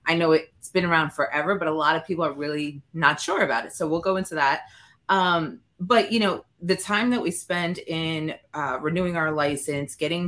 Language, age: English, 20-39